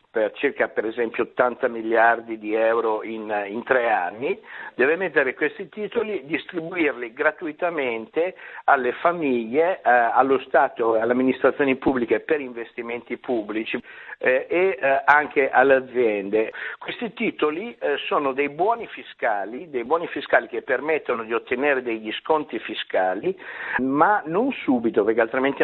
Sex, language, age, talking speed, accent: male, Italian, 60-79, 135 wpm, native